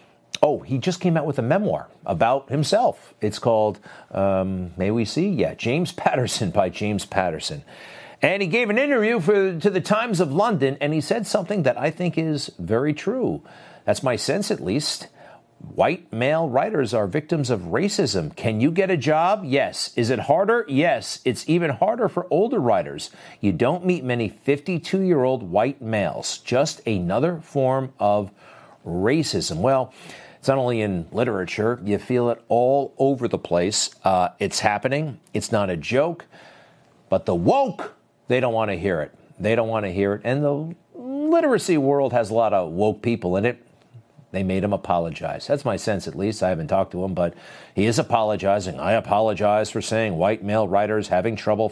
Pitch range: 105-155 Hz